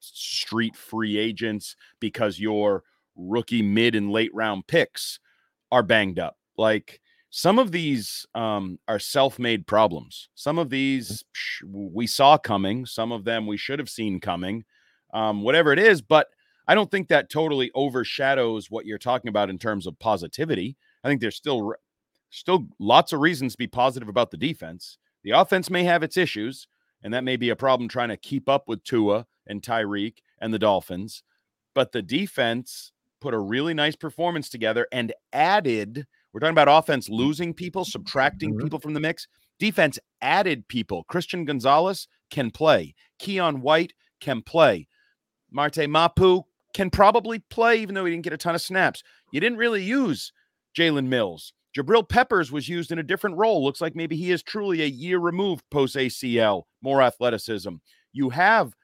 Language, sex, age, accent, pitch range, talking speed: English, male, 30-49, American, 110-170 Hz, 170 wpm